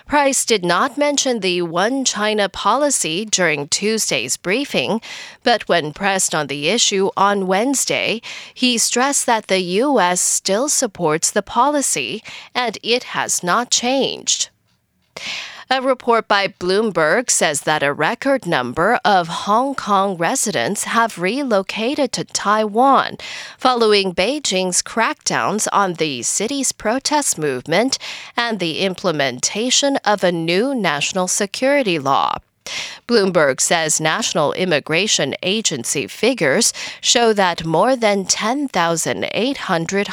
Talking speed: 115 wpm